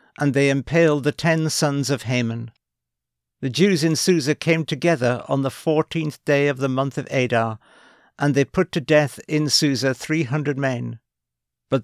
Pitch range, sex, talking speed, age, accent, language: 115-145 Hz, male, 170 wpm, 60-79, British, English